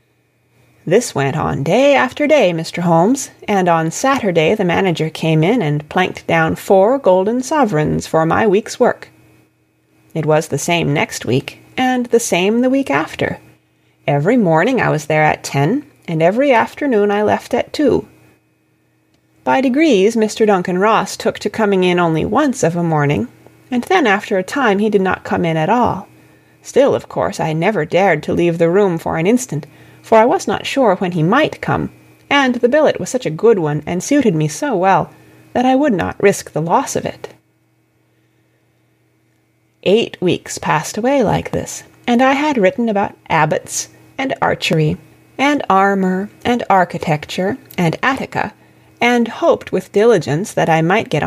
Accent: American